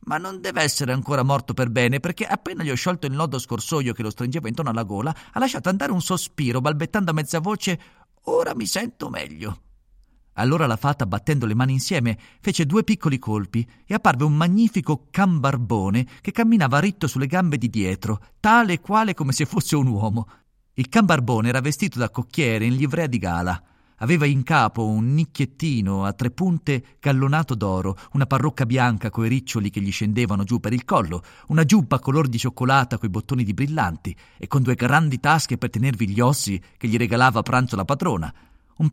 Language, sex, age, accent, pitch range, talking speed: Italian, male, 40-59, native, 110-160 Hz, 190 wpm